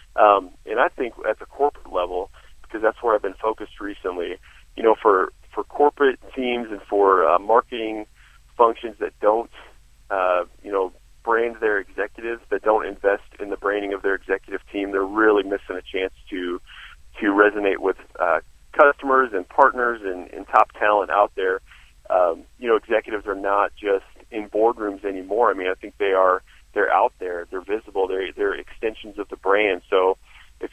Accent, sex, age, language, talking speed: American, male, 40-59, English, 180 wpm